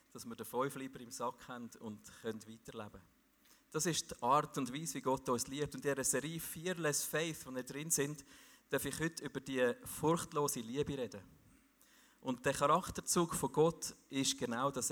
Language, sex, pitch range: German, male, 130-160 Hz